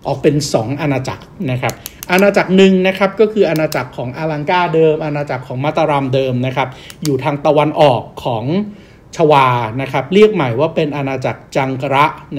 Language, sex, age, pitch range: Thai, male, 60-79, 135-170 Hz